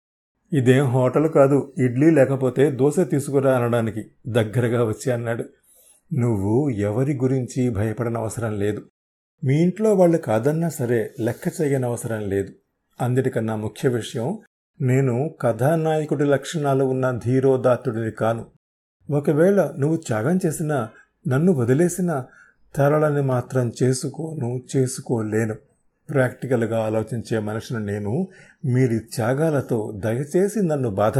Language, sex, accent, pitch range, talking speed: Telugu, male, native, 120-150 Hz, 105 wpm